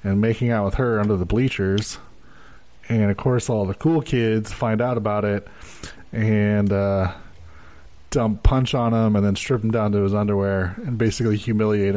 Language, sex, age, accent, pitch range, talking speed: English, male, 20-39, American, 100-120 Hz, 180 wpm